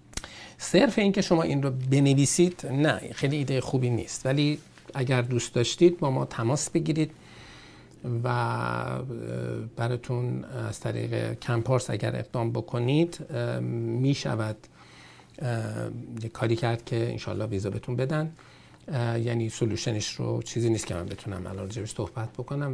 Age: 50-69